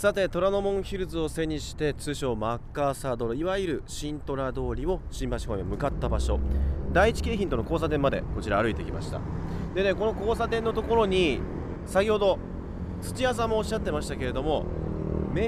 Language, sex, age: Japanese, male, 30-49